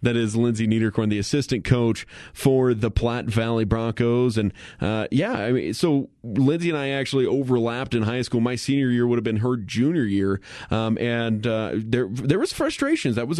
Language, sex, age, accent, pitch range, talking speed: English, male, 30-49, American, 110-135 Hz, 195 wpm